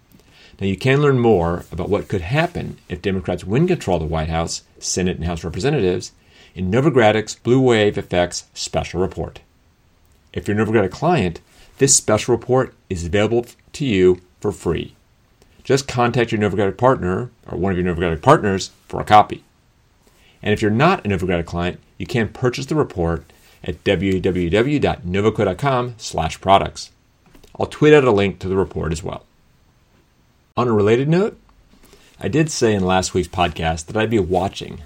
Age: 40-59